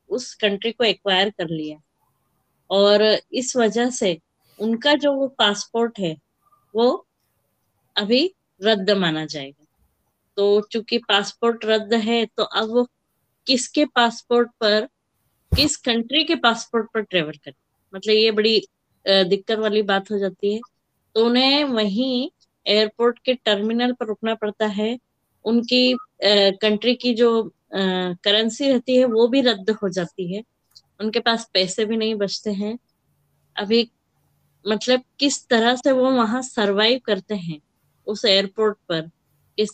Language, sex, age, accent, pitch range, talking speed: Hindi, female, 20-39, native, 195-235 Hz, 140 wpm